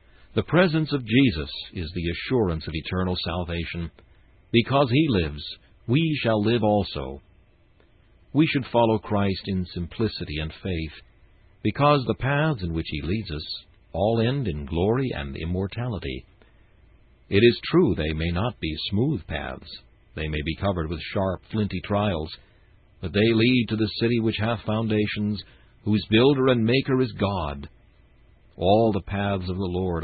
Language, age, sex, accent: English, 60-79, male, American